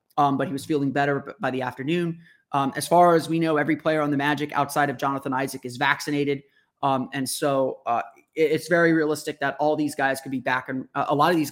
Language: English